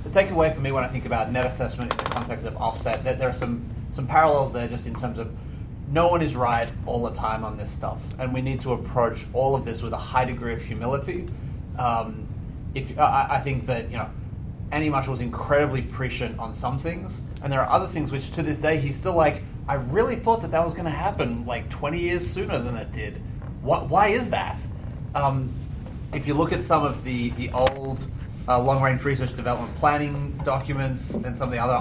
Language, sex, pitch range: English, male, 120-150 Hz